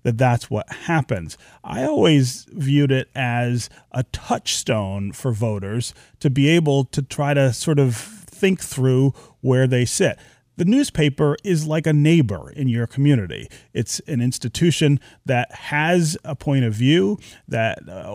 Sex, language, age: male, English, 30-49